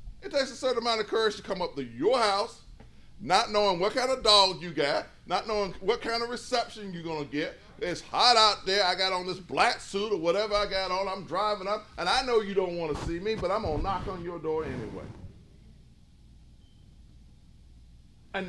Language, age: English, 40-59